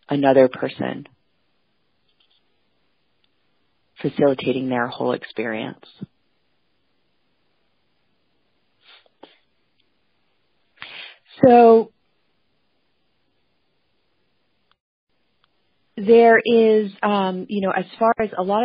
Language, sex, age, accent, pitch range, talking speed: English, female, 30-49, American, 135-165 Hz, 55 wpm